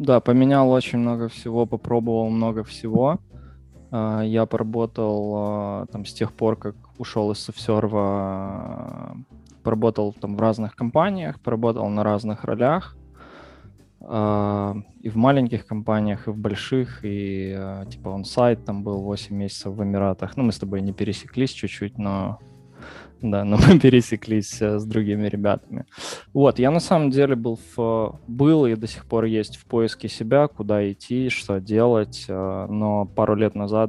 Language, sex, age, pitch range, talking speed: Russian, male, 20-39, 100-120 Hz, 145 wpm